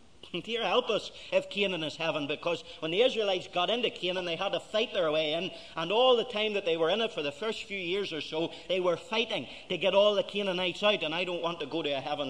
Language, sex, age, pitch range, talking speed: English, male, 40-59, 165-260 Hz, 270 wpm